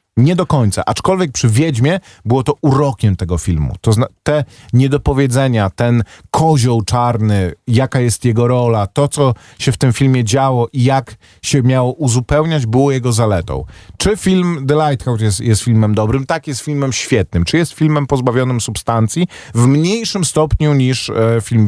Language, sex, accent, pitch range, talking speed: Polish, male, native, 105-145 Hz, 160 wpm